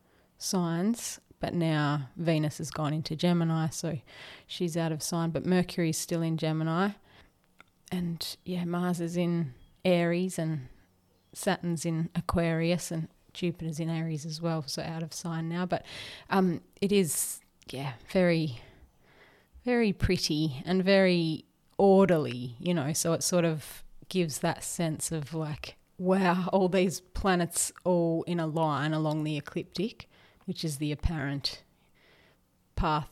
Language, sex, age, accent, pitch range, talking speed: English, female, 30-49, Australian, 150-175 Hz, 140 wpm